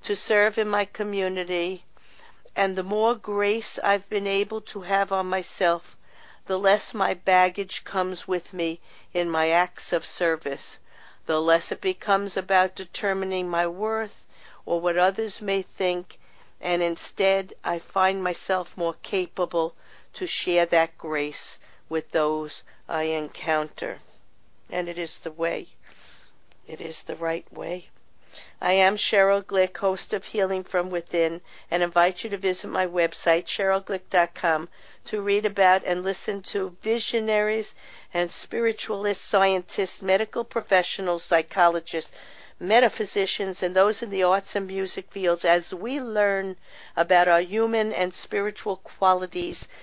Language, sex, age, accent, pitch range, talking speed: English, female, 50-69, American, 170-200 Hz, 135 wpm